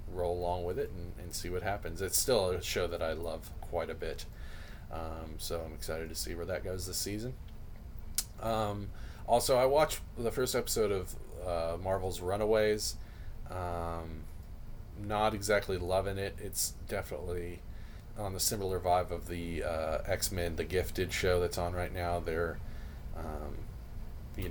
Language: English